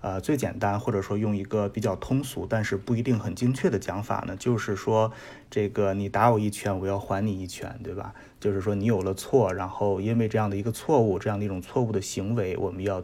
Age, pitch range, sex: 20-39, 100-120 Hz, male